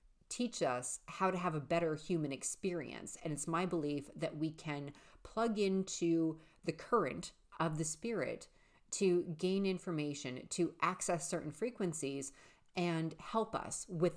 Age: 40-59